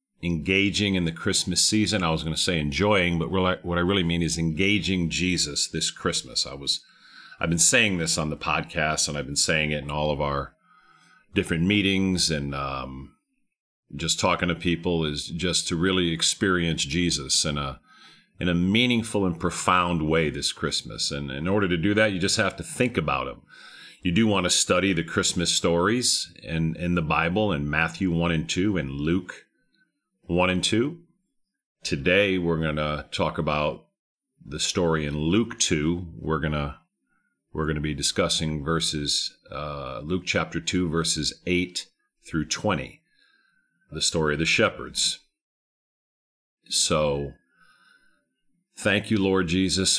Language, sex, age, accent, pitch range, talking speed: English, male, 40-59, American, 80-95 Hz, 160 wpm